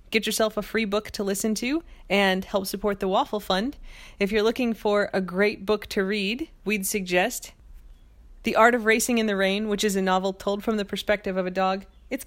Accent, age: American, 30-49